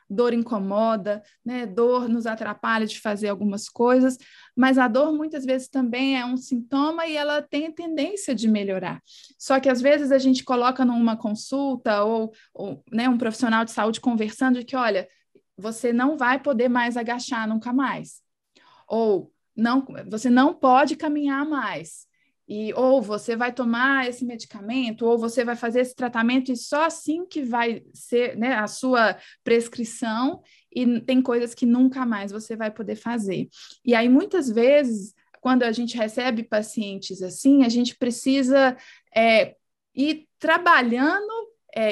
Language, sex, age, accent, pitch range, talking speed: Portuguese, female, 20-39, Brazilian, 225-260 Hz, 160 wpm